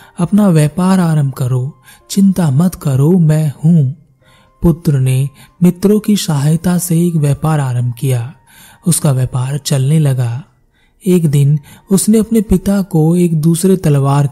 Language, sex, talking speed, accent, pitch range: Hindi, male, 65 wpm, native, 140-175 Hz